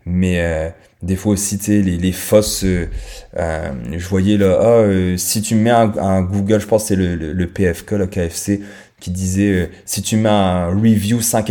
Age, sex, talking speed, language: 20-39, male, 215 wpm, French